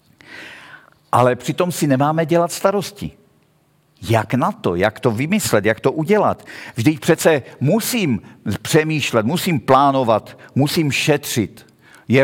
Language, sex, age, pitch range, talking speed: Czech, male, 50-69, 125-160 Hz, 120 wpm